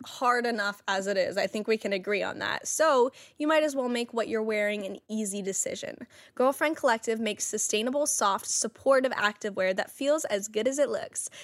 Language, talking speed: English, 200 wpm